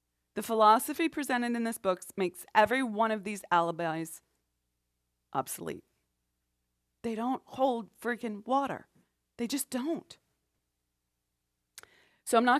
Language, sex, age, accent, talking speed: English, female, 30-49, American, 115 wpm